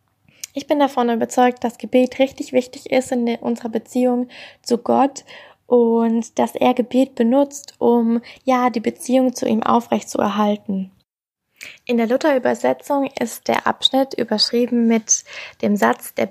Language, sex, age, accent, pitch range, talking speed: German, female, 20-39, German, 215-250 Hz, 140 wpm